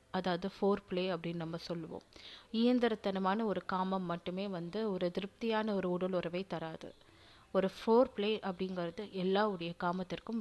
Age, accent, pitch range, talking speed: 30-49, native, 180-230 Hz, 125 wpm